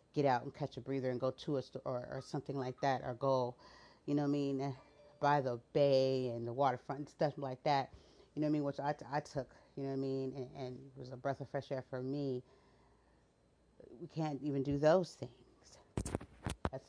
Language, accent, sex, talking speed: English, American, female, 230 wpm